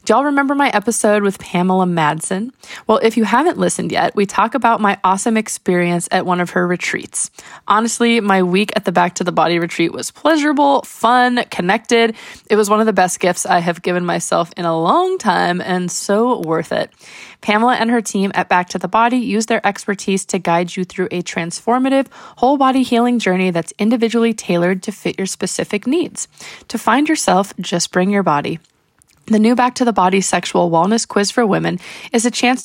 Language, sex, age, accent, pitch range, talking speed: English, female, 20-39, American, 185-235 Hz, 200 wpm